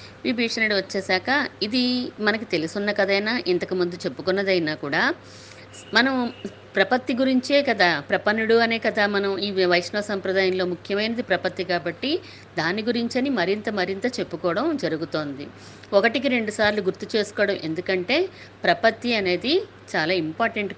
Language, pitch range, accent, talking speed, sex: Telugu, 150-215 Hz, native, 115 wpm, female